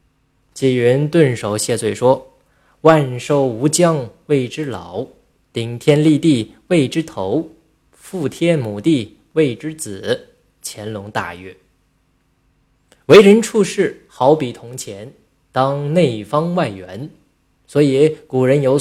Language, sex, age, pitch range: Chinese, male, 20-39, 115-160 Hz